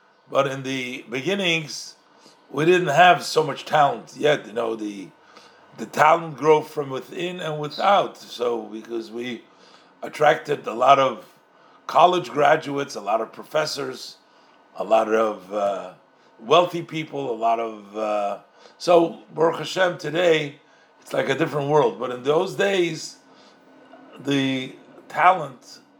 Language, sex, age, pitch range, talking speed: English, male, 50-69, 115-160 Hz, 135 wpm